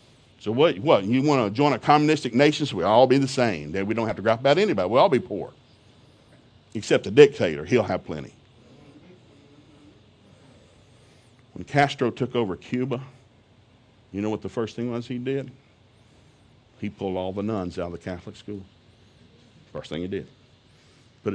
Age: 50-69